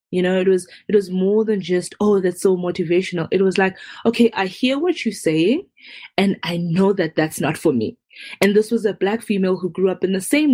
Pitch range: 165-200 Hz